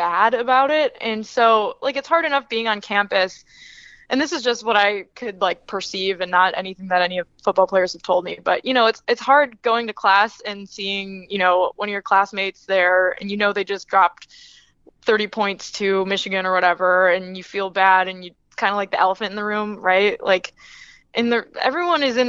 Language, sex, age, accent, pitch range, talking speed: English, female, 20-39, American, 190-225 Hz, 220 wpm